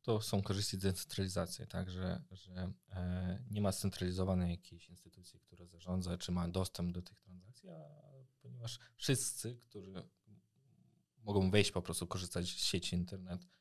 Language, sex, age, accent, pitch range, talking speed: Polish, male, 20-39, native, 90-100 Hz, 135 wpm